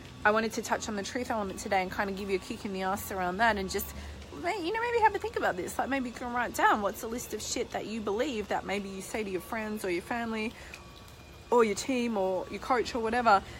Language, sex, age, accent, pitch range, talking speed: English, female, 20-39, Australian, 175-220 Hz, 280 wpm